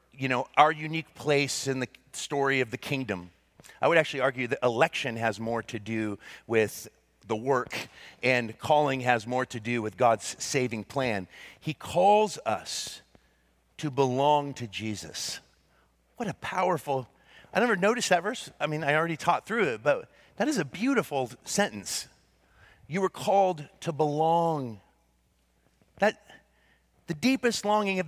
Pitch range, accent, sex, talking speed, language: 120-170 Hz, American, male, 155 wpm, English